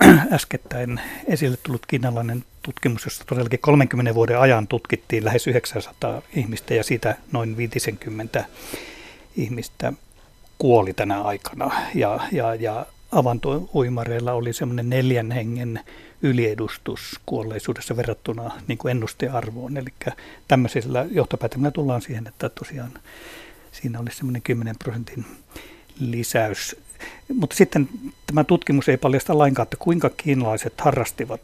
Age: 60-79